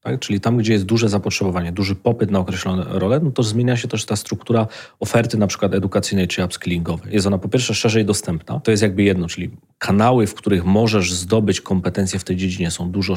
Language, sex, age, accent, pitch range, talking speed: Polish, male, 30-49, native, 95-115 Hz, 215 wpm